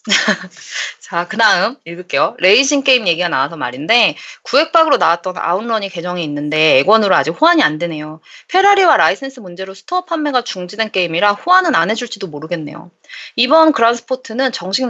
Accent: Korean